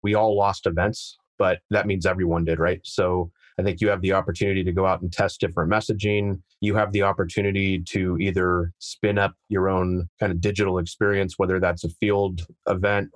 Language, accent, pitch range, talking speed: English, American, 90-105 Hz, 195 wpm